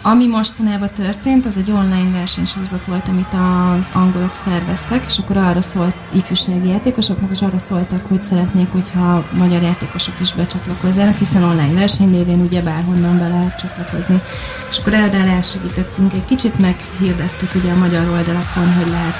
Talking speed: 155 wpm